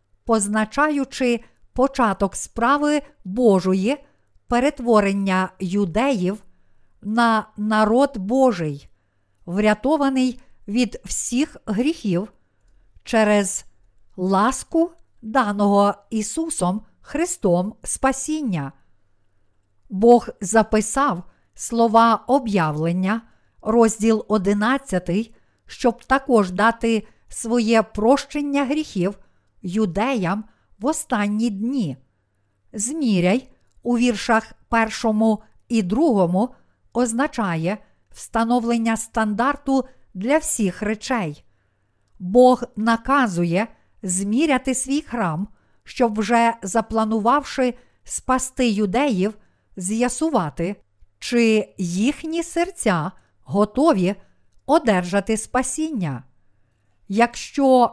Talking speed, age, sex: 65 wpm, 50-69, female